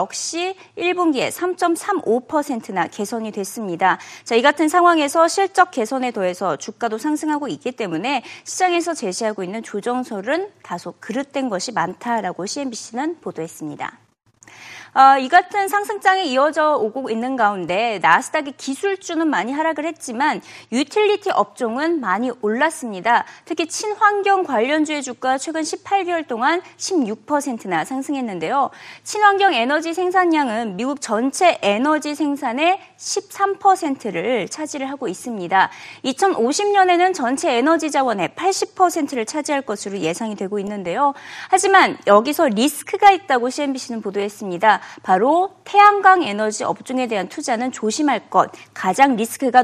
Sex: female